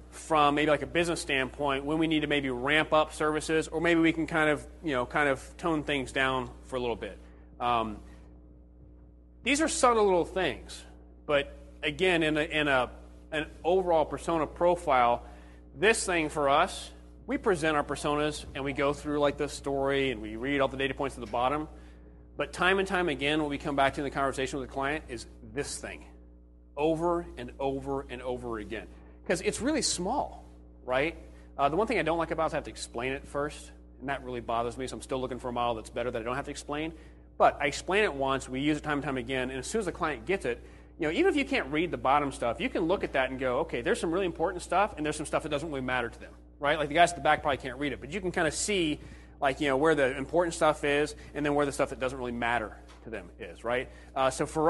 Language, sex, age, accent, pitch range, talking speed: English, male, 30-49, American, 120-155 Hz, 255 wpm